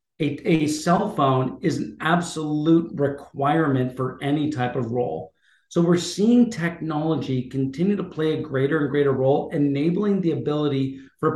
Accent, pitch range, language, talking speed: American, 135-170 Hz, English, 155 wpm